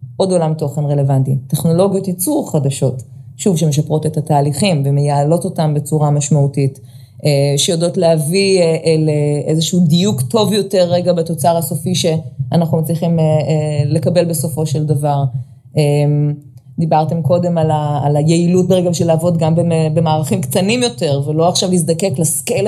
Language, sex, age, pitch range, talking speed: Hebrew, female, 20-39, 150-175 Hz, 125 wpm